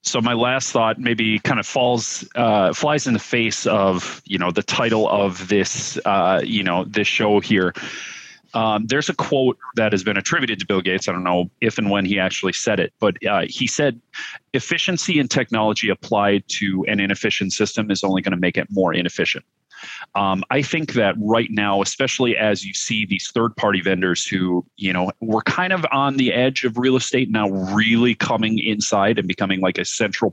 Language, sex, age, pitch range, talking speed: English, male, 30-49, 95-115 Hz, 200 wpm